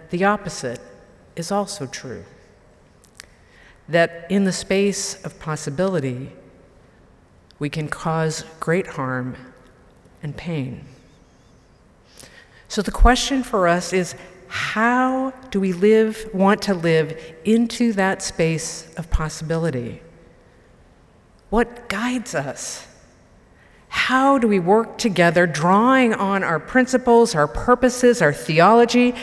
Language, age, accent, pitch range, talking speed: English, 50-69, American, 160-225 Hz, 105 wpm